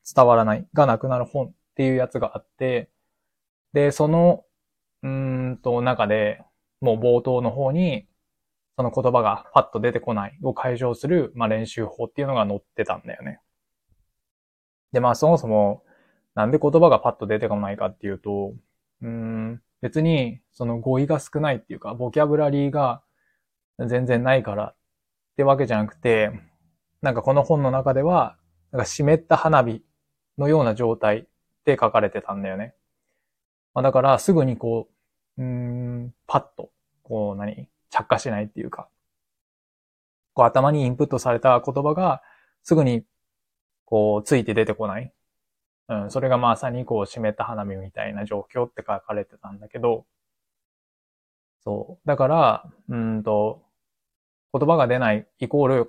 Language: Japanese